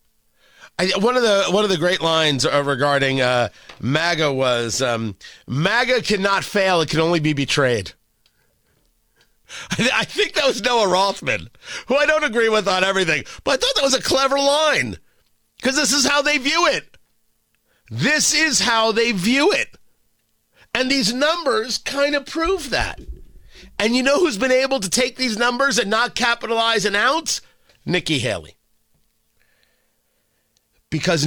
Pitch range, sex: 150-245 Hz, male